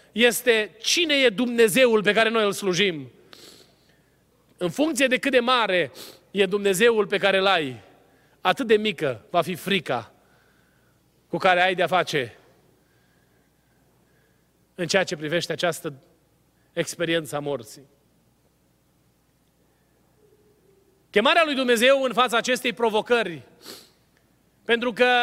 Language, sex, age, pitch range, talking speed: Romanian, male, 30-49, 195-255 Hz, 115 wpm